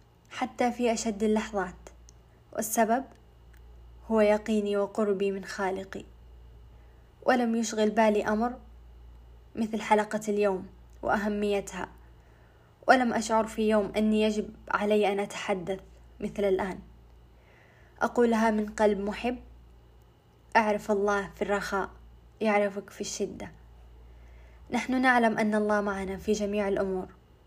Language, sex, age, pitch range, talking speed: Arabic, female, 20-39, 180-220 Hz, 105 wpm